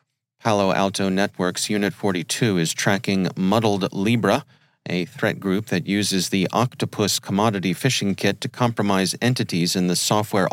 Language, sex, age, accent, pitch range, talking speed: English, male, 40-59, American, 95-120 Hz, 140 wpm